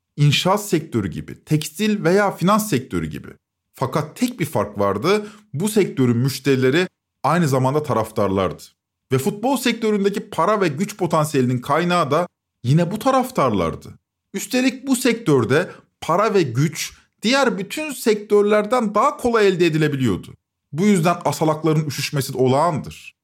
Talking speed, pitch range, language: 125 wpm, 135-210 Hz, Turkish